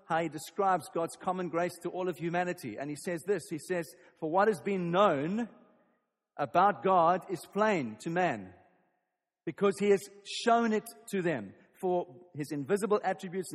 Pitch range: 160-200 Hz